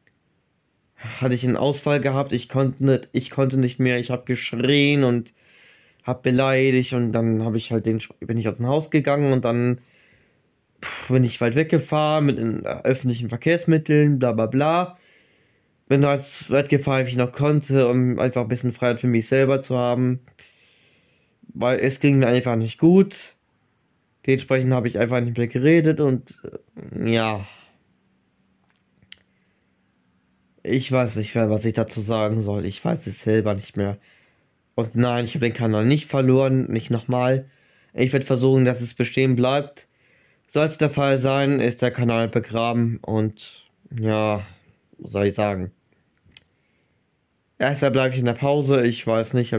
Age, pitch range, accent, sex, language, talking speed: 20-39, 115-135 Hz, German, male, German, 160 wpm